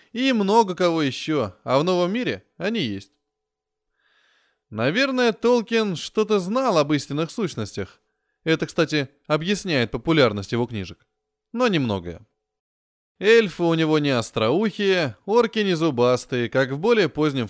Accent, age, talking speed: native, 20-39, 125 wpm